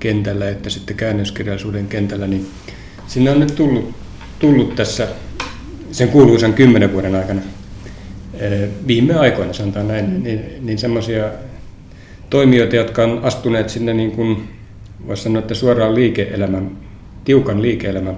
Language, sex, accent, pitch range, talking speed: Finnish, male, native, 95-115 Hz, 120 wpm